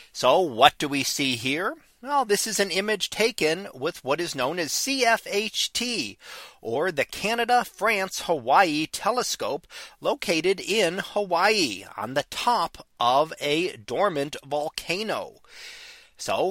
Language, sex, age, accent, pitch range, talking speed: English, male, 40-59, American, 160-225 Hz, 125 wpm